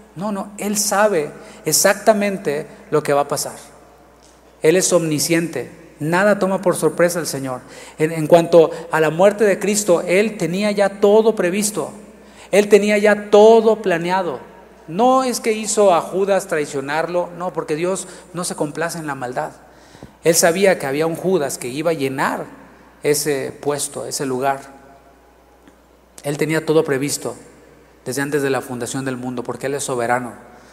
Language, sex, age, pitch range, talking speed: Spanish, male, 40-59, 140-195 Hz, 160 wpm